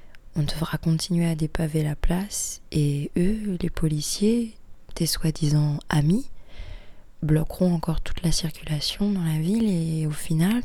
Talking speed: 140 wpm